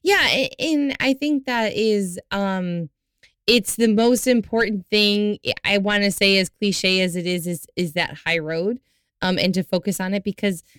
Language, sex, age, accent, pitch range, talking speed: English, female, 20-39, American, 170-205 Hz, 185 wpm